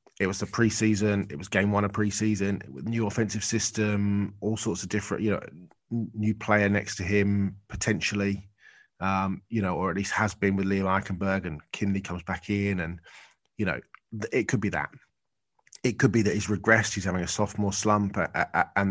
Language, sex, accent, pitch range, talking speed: English, male, British, 95-105 Hz, 195 wpm